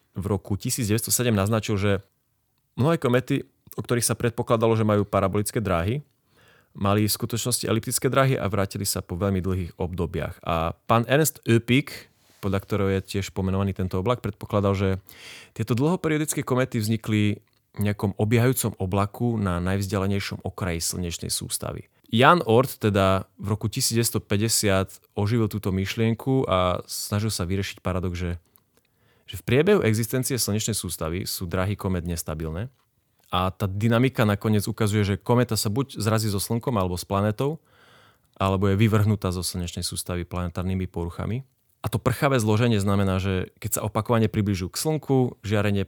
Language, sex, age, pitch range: Slovak, male, 30-49, 95-115 Hz